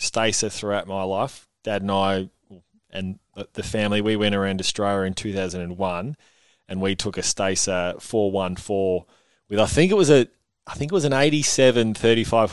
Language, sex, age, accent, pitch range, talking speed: English, male, 20-39, Australian, 105-120 Hz, 170 wpm